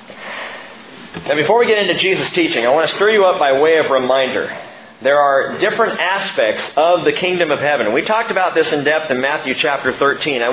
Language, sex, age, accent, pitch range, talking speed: English, male, 40-59, American, 170-230 Hz, 210 wpm